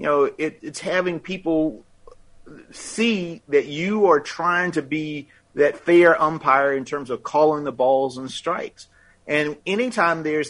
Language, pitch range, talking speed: English, 150-195 Hz, 155 wpm